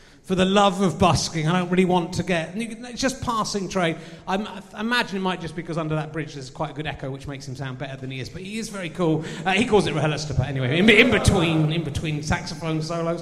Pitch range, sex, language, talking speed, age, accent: 155-205 Hz, male, English, 265 wpm, 30-49, British